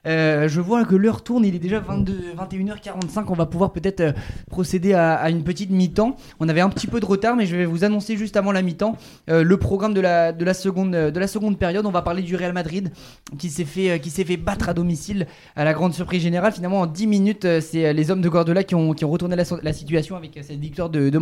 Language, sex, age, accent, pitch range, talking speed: French, male, 20-39, French, 165-195 Hz, 255 wpm